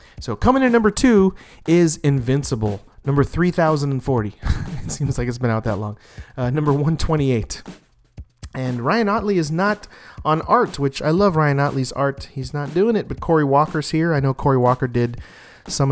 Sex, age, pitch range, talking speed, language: male, 30-49, 120-160 Hz, 175 wpm, English